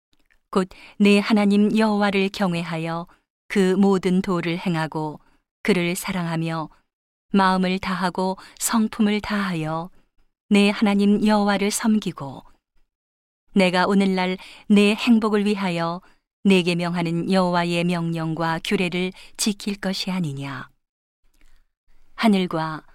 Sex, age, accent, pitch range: female, 40-59, native, 175-205 Hz